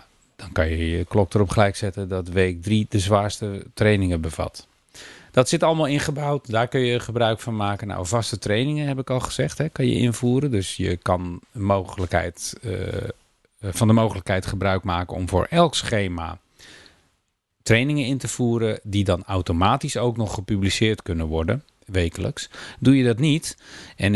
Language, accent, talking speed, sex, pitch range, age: Dutch, Dutch, 170 wpm, male, 95-120 Hz, 40-59